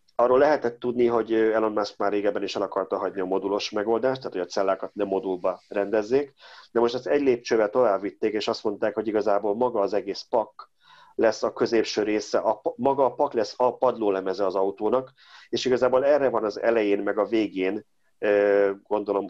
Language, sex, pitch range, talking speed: Hungarian, male, 95-120 Hz, 190 wpm